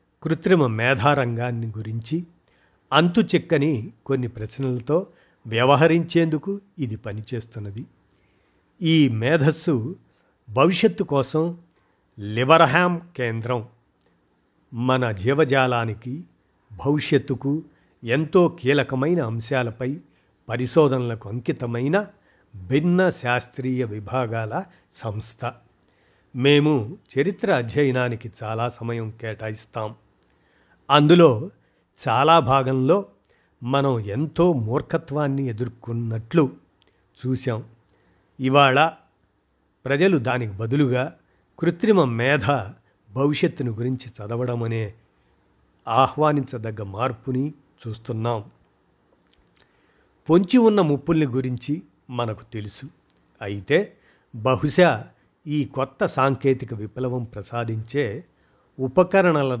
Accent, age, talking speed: native, 50-69, 70 wpm